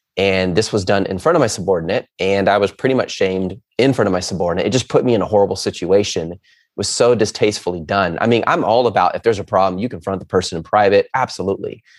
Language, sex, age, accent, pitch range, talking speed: English, male, 30-49, American, 95-130 Hz, 245 wpm